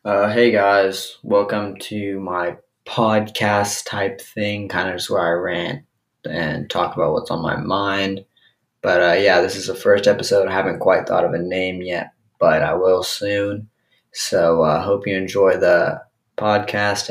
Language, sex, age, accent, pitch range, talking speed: English, male, 20-39, American, 90-105 Hz, 170 wpm